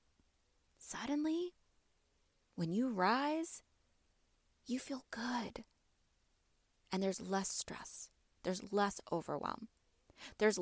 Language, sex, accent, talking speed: English, female, American, 85 wpm